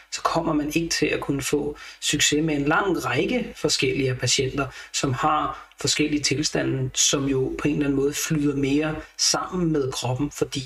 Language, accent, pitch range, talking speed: Danish, native, 140-165 Hz, 180 wpm